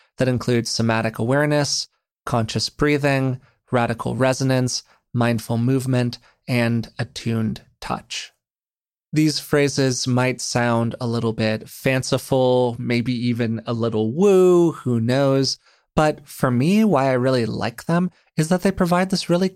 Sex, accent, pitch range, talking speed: male, American, 115-145 Hz, 130 wpm